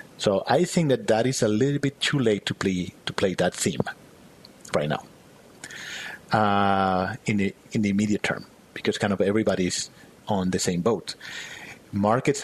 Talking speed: 160 wpm